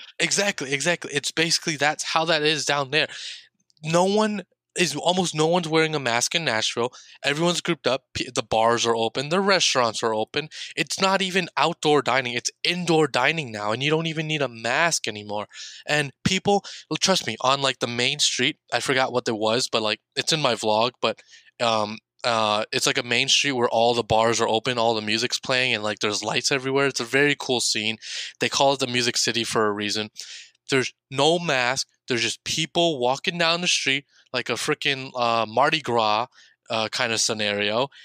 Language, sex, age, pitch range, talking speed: English, male, 20-39, 120-165 Hz, 200 wpm